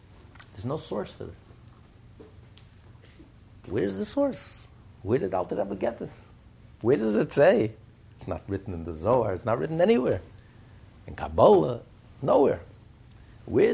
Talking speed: 140 wpm